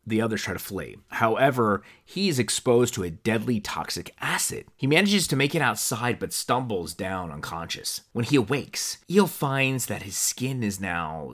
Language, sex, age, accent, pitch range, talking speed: English, male, 30-49, American, 100-140 Hz, 180 wpm